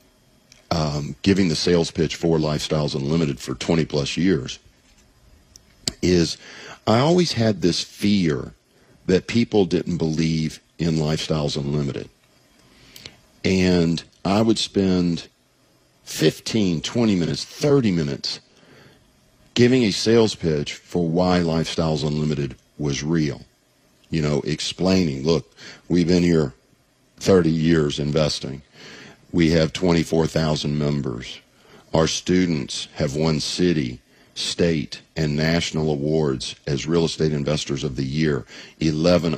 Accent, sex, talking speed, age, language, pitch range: American, male, 115 wpm, 50-69, English, 75-95 Hz